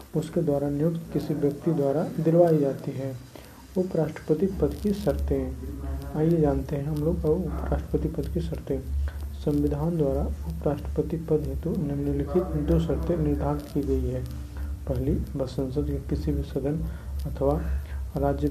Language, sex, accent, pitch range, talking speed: Hindi, male, native, 120-160 Hz, 150 wpm